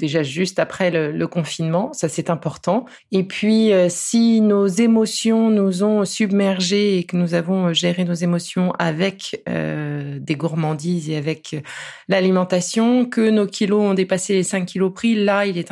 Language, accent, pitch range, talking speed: French, French, 160-195 Hz, 160 wpm